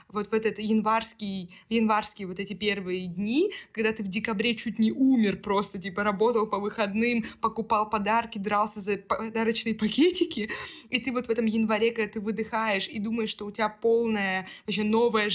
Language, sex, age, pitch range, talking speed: Russian, female, 20-39, 210-245 Hz, 175 wpm